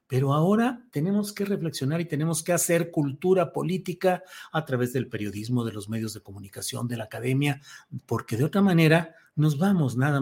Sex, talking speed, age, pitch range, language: male, 175 wpm, 40-59, 120-170 Hz, Spanish